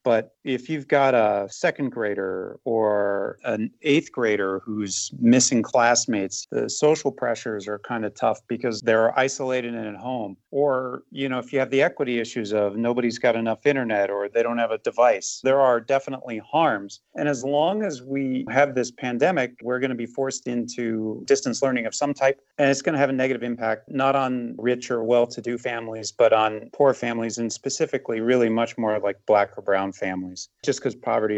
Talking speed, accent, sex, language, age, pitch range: 195 wpm, American, male, English, 40-59, 115-135 Hz